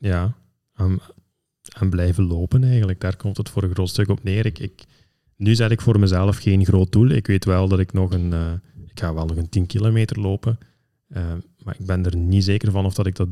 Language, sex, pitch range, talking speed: Dutch, male, 95-110 Hz, 235 wpm